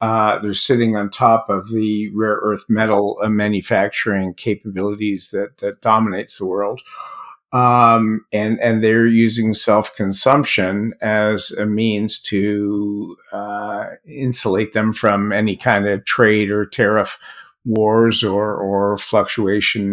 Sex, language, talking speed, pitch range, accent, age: male, English, 125 wpm, 105-120 Hz, American, 50-69